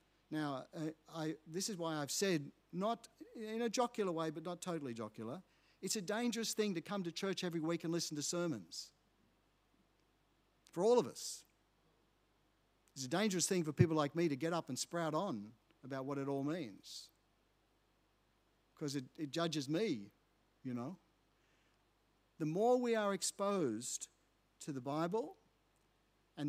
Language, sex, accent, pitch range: English, male, Australian, 130-175 Hz